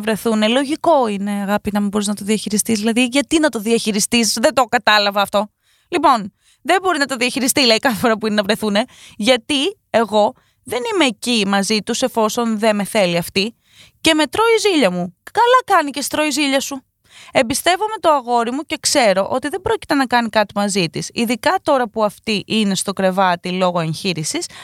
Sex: female